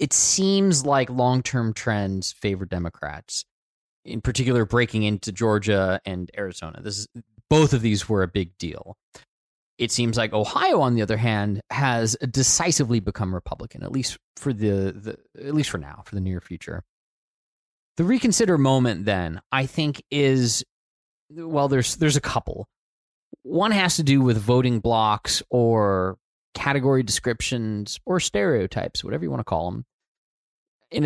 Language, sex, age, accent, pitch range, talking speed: English, male, 20-39, American, 105-140 Hz, 155 wpm